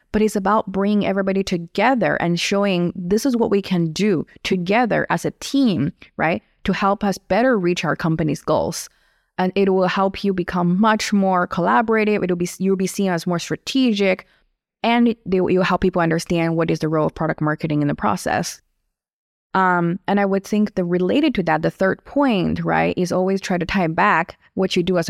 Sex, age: female, 20-39